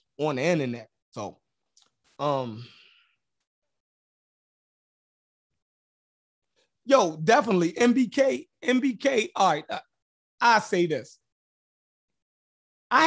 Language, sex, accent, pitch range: English, male, American, 135-180 Hz